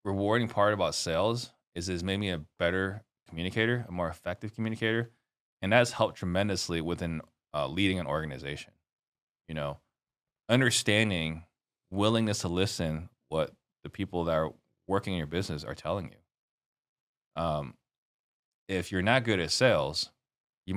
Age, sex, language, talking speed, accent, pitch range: 20-39, male, English, 145 wpm, American, 85-105 Hz